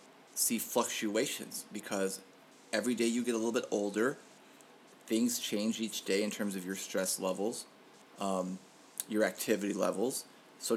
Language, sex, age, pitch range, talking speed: English, male, 30-49, 100-115 Hz, 145 wpm